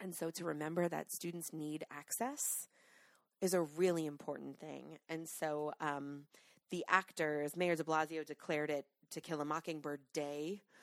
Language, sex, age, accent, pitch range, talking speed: English, female, 20-39, American, 145-170 Hz, 155 wpm